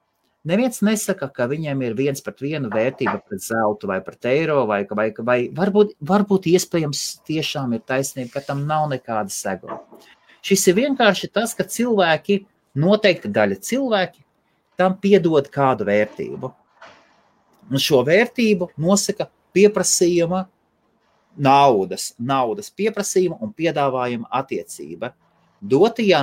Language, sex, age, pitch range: English, male, 30-49, 130-205 Hz